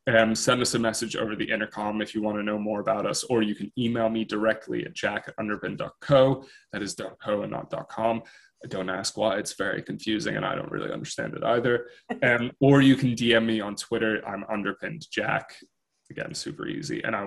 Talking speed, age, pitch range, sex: 210 wpm, 20-39, 105-120 Hz, male